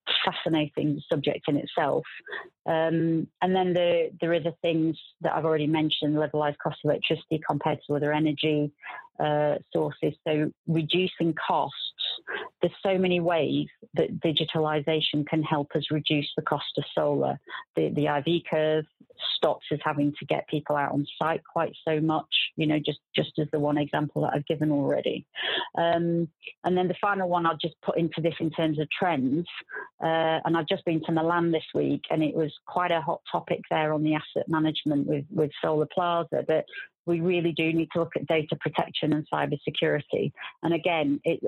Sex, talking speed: female, 180 wpm